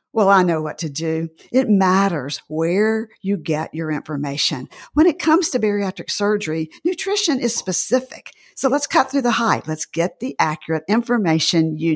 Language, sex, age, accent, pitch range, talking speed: English, female, 50-69, American, 160-230 Hz, 170 wpm